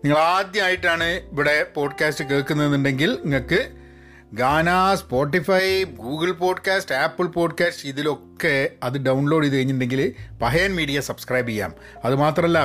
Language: Malayalam